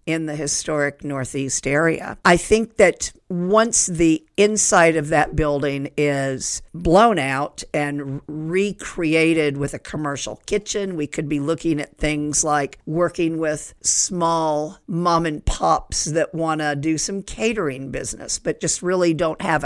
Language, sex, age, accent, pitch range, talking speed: English, female, 50-69, American, 150-180 Hz, 140 wpm